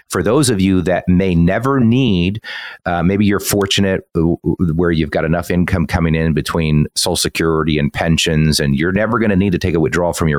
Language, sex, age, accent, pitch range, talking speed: English, male, 40-59, American, 80-110 Hz, 220 wpm